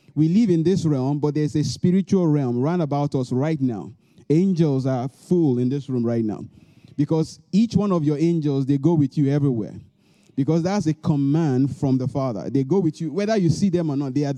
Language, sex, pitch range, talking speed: English, male, 135-175 Hz, 220 wpm